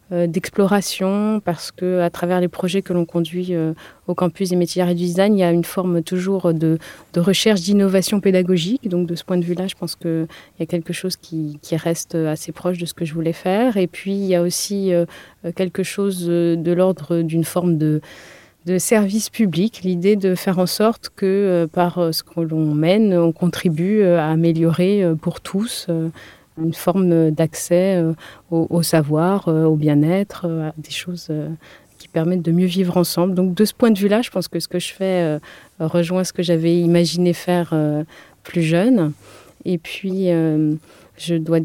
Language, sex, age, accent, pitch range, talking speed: French, female, 30-49, French, 165-185 Hz, 195 wpm